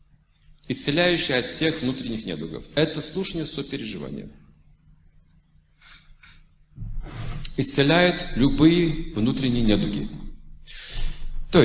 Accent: native